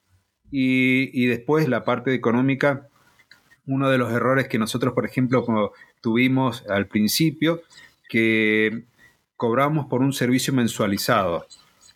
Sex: male